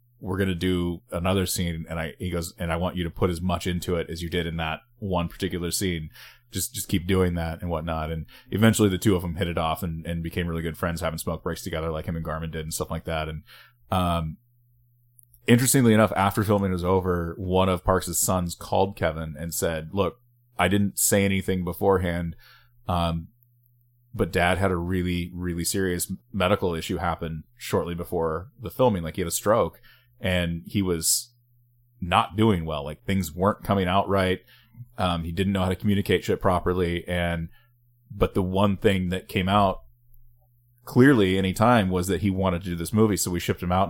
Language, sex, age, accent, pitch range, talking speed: English, male, 20-39, American, 85-115 Hz, 205 wpm